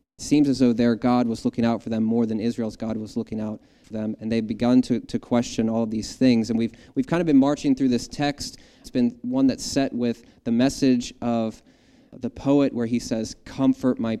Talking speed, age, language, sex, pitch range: 230 wpm, 20-39, English, male, 115-130 Hz